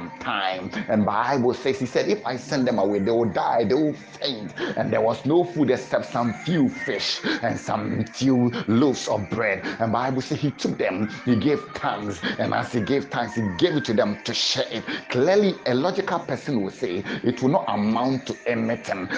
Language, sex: English, male